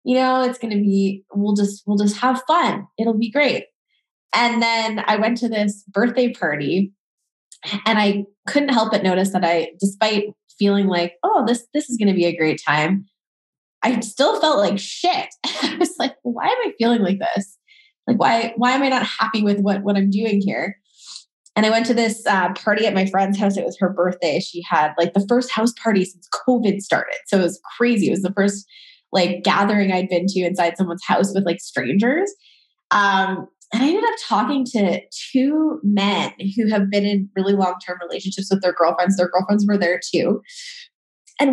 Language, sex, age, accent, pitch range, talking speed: English, female, 20-39, American, 190-245 Hz, 200 wpm